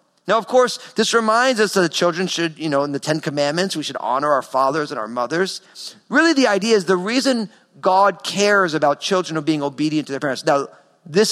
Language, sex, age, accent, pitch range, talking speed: English, male, 40-59, American, 155-205 Hz, 225 wpm